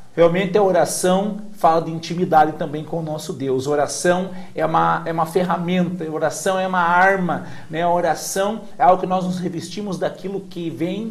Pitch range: 150-185 Hz